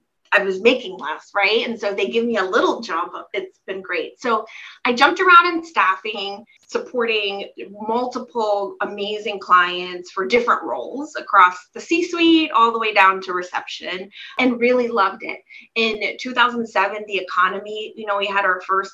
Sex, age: female, 20-39